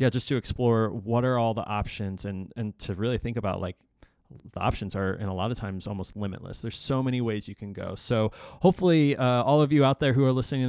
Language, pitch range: English, 100-130 Hz